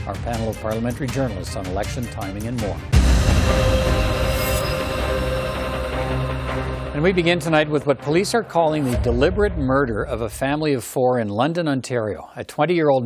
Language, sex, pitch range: English, male, 105-130 Hz